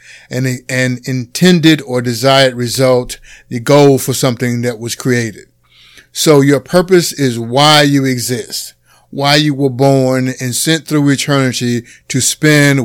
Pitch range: 125-150 Hz